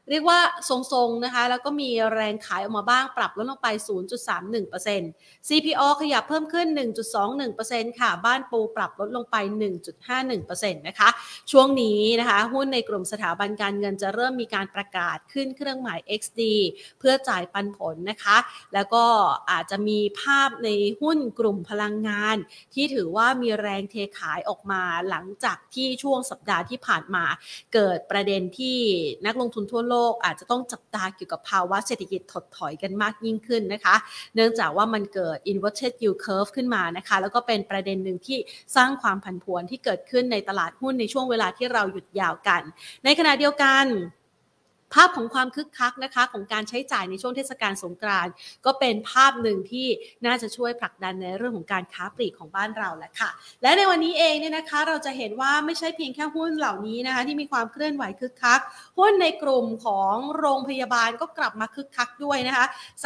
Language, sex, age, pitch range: Thai, female, 30-49, 205-270 Hz